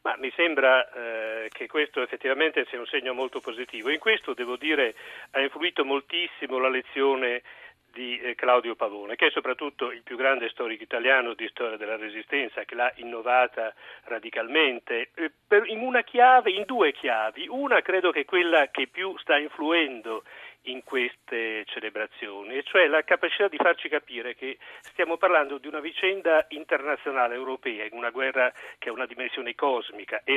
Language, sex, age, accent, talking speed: Italian, male, 40-59, native, 170 wpm